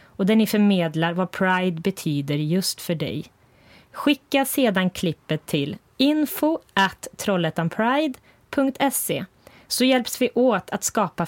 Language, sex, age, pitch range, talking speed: English, female, 30-49, 170-225 Hz, 115 wpm